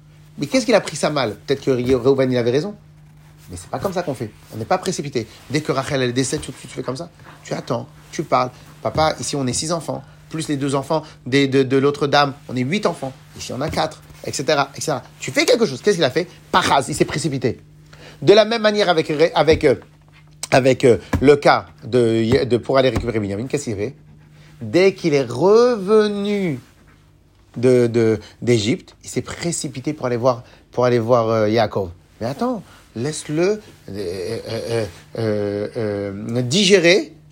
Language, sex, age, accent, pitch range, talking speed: French, male, 40-59, French, 120-185 Hz, 195 wpm